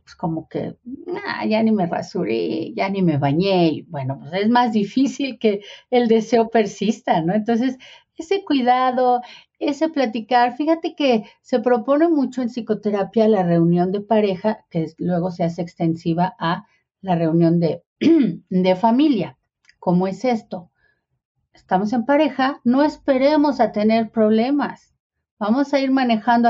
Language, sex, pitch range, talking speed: Spanish, female, 175-245 Hz, 145 wpm